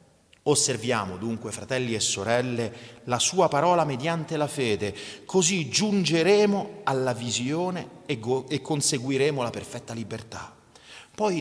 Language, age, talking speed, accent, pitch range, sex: Italian, 40-59, 115 wpm, native, 125-205 Hz, male